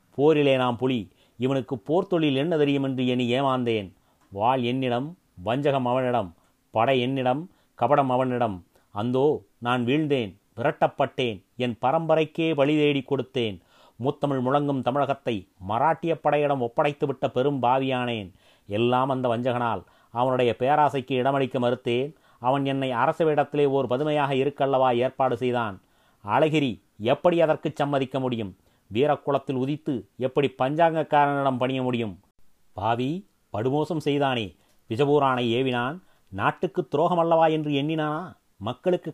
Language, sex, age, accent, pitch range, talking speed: Tamil, male, 30-49, native, 120-150 Hz, 110 wpm